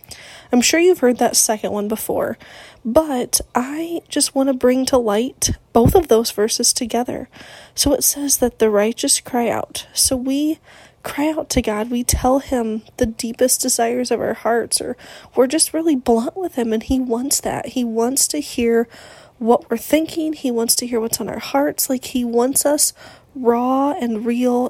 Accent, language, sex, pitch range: American, English, female, 230-270 Hz